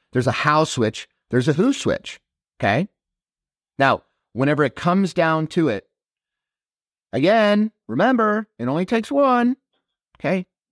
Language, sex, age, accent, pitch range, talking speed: English, male, 30-49, American, 110-165 Hz, 130 wpm